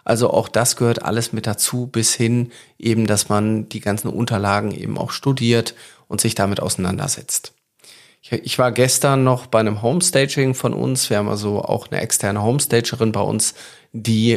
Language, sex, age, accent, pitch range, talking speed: German, male, 40-59, German, 105-120 Hz, 170 wpm